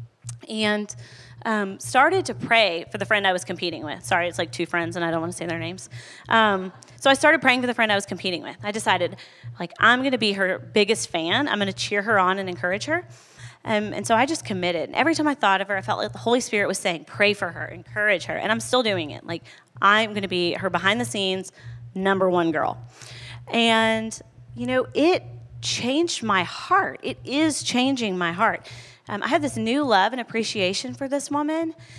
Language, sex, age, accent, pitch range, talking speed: English, female, 30-49, American, 155-225 Hz, 225 wpm